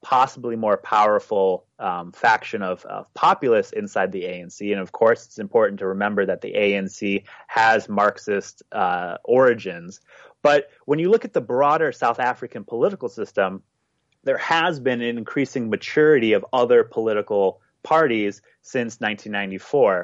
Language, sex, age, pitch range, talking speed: English, male, 30-49, 100-135 Hz, 145 wpm